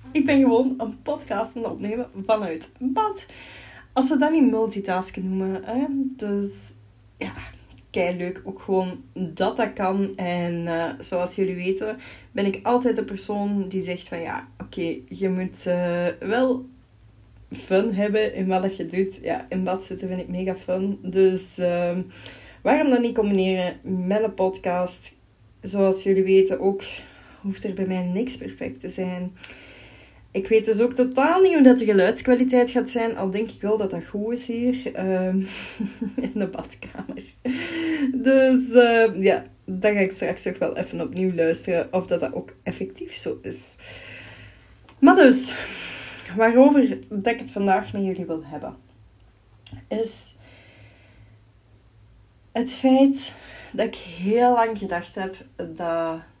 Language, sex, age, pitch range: Dutch, female, 20-39, 180-235 Hz